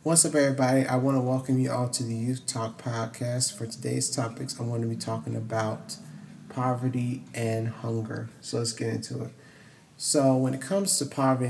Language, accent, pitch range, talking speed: English, American, 115-130 Hz, 195 wpm